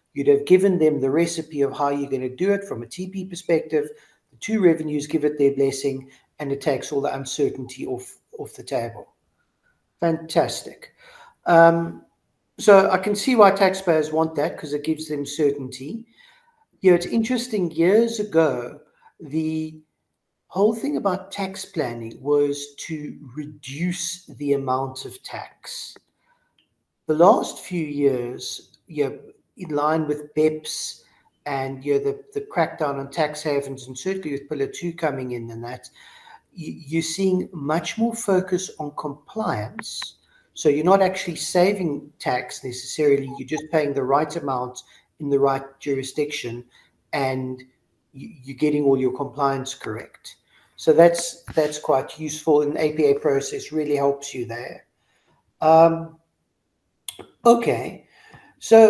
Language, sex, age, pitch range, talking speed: English, male, 50-69, 140-185 Hz, 145 wpm